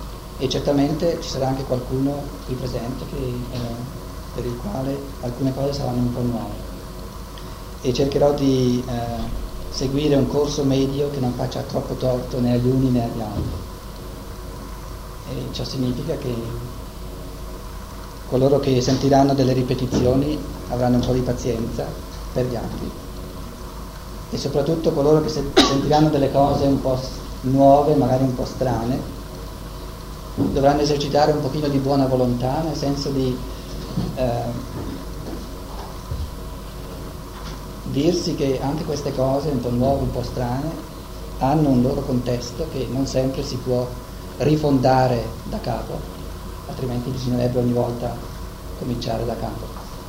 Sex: male